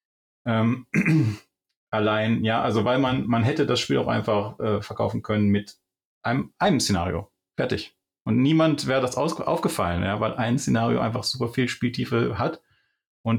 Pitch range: 100-115 Hz